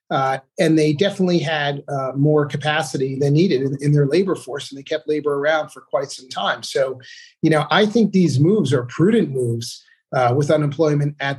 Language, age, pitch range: English, 40-59, 130-155 Hz